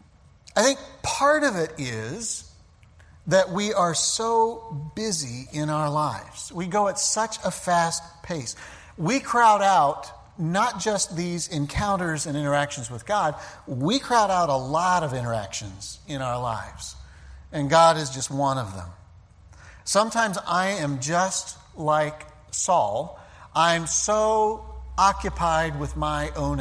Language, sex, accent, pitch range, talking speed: English, male, American, 105-170 Hz, 140 wpm